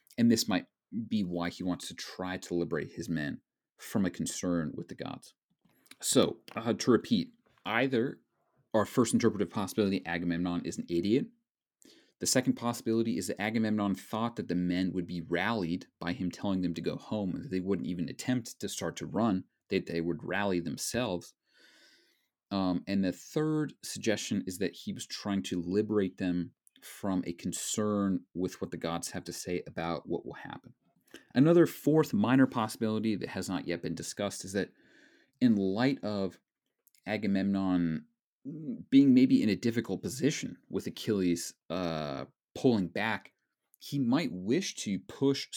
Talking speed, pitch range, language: 165 wpm, 85-115 Hz, English